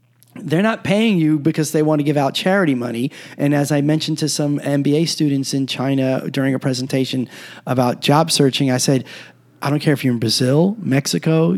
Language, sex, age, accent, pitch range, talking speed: English, male, 30-49, American, 150-200 Hz, 195 wpm